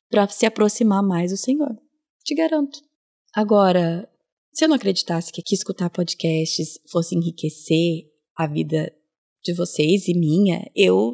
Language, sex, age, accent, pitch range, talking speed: Portuguese, female, 20-39, Brazilian, 175-215 Hz, 140 wpm